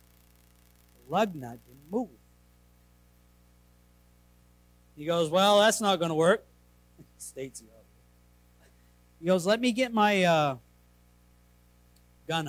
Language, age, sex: English, 50-69, male